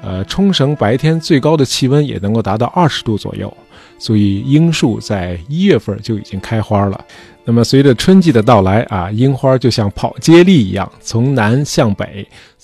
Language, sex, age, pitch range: Chinese, male, 20-39, 105-155 Hz